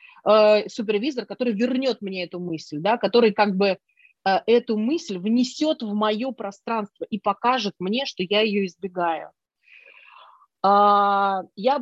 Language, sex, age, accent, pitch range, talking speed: Russian, female, 30-49, native, 185-230 Hz, 115 wpm